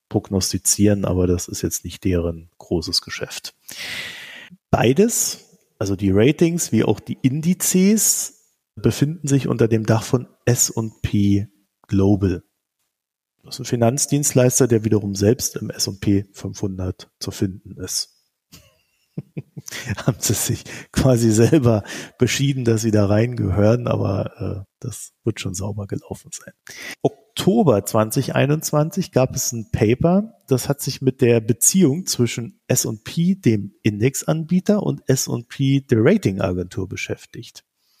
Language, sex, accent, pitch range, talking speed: German, male, German, 105-140 Hz, 125 wpm